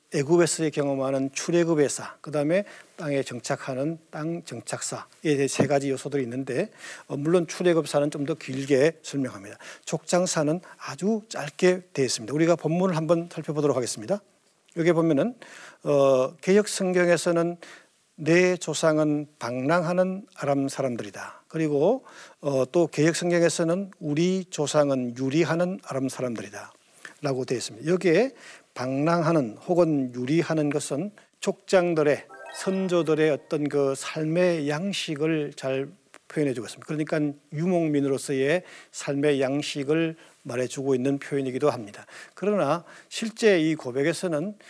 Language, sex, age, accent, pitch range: Korean, male, 50-69, native, 140-175 Hz